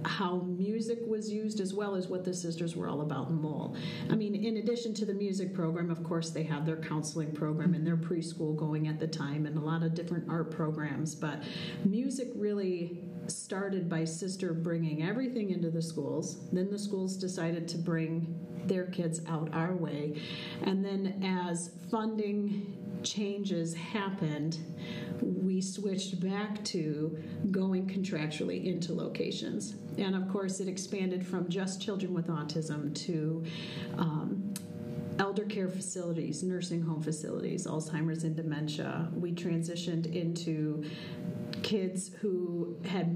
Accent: American